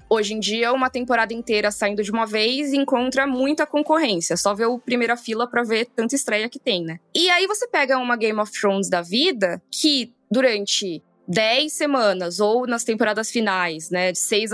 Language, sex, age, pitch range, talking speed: Portuguese, female, 10-29, 210-295 Hz, 190 wpm